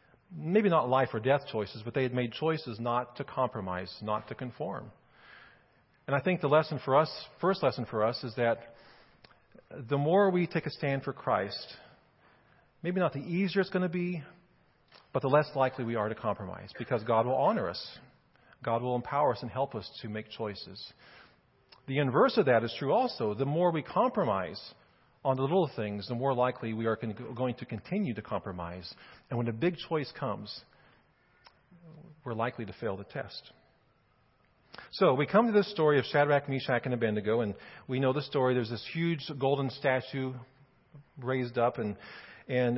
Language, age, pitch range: English, 40-59, 120-150 Hz